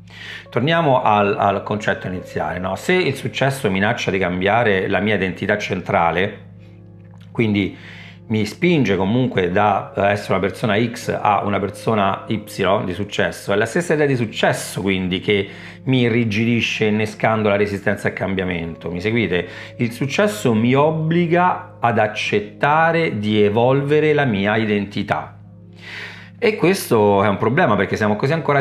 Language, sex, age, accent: Italian, male, 40-59, native